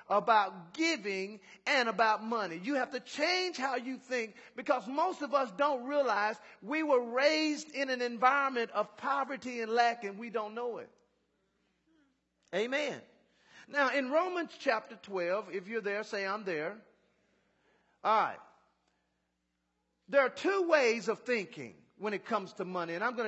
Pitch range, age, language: 200-275 Hz, 40-59, English